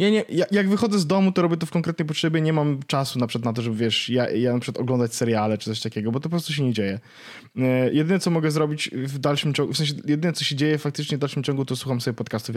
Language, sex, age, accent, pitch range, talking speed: Polish, male, 20-39, native, 115-160 Hz, 290 wpm